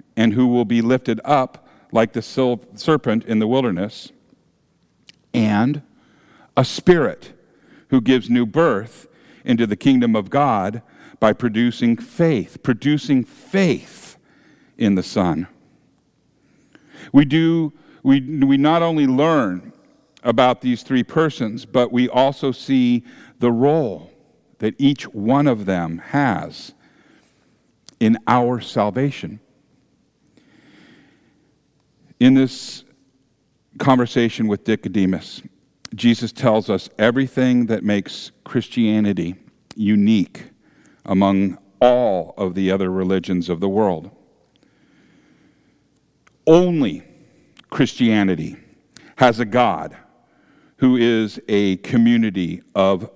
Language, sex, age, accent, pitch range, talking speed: English, male, 50-69, American, 105-135 Hz, 100 wpm